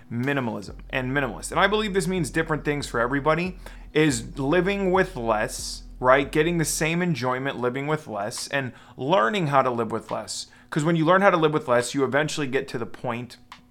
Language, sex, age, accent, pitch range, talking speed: English, male, 30-49, American, 125-155 Hz, 200 wpm